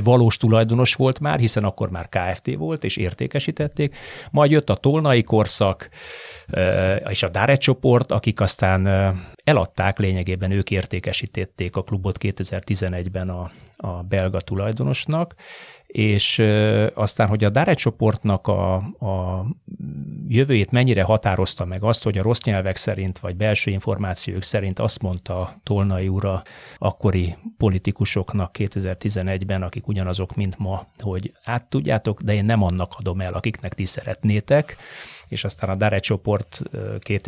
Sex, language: male, Hungarian